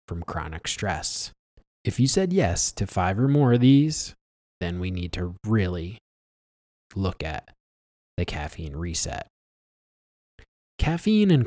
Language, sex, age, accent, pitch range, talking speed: English, male, 20-39, American, 85-115 Hz, 130 wpm